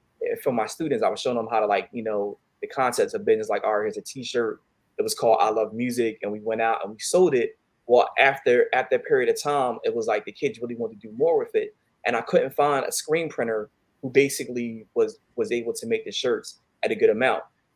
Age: 20-39